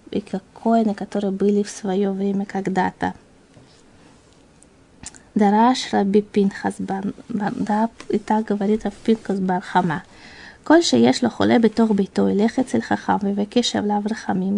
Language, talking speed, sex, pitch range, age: Russian, 135 wpm, female, 200-235 Hz, 20-39